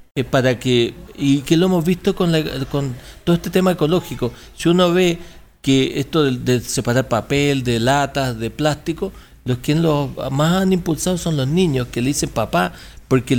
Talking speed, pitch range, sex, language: 190 wpm, 135-170 Hz, male, Spanish